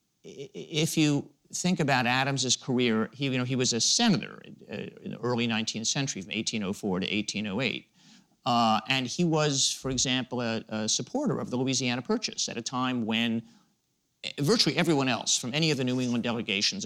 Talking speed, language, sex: 180 wpm, English, male